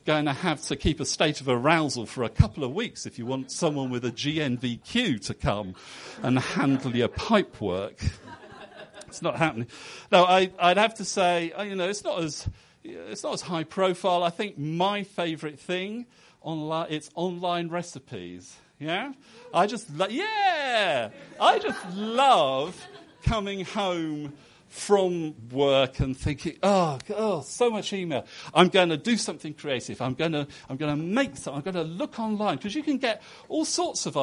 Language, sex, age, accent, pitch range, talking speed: English, male, 50-69, British, 125-185 Hz, 170 wpm